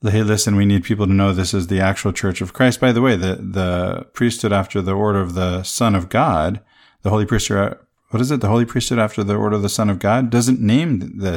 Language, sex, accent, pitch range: English, male, American, 95-115 Hz